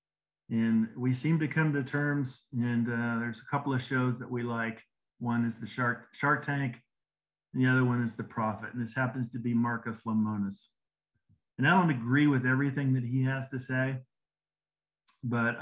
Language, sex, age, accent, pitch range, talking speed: English, male, 40-59, American, 115-135 Hz, 190 wpm